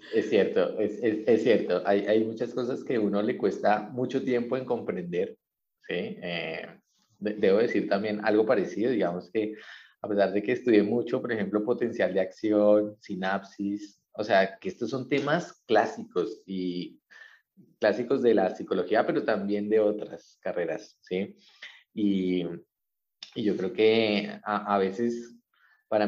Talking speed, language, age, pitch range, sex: 155 wpm, Spanish, 30-49, 100-130 Hz, male